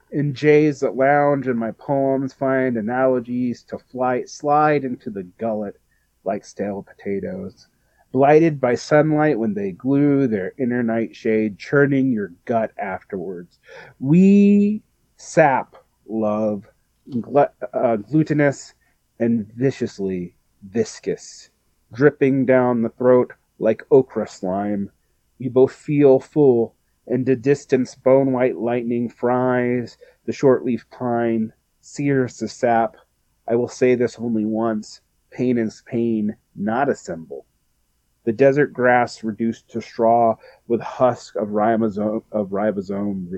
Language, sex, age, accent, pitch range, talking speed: English, male, 30-49, American, 110-135 Hz, 120 wpm